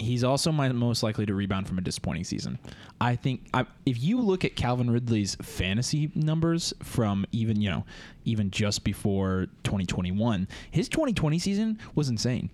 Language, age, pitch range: English, 20-39, 105-135 Hz